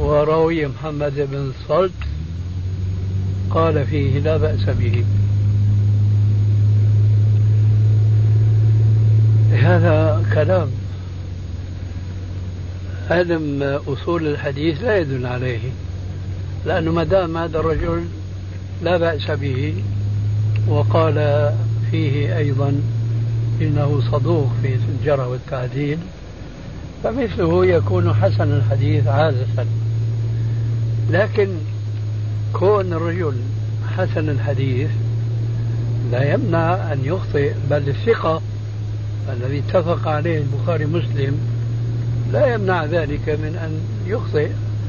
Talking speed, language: 80 wpm, Arabic